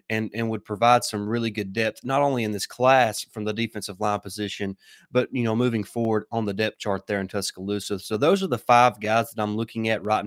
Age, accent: 30-49, American